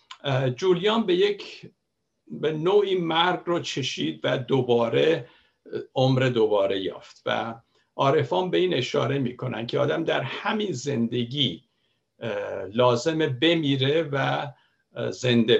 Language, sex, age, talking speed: Persian, male, 60-79, 110 wpm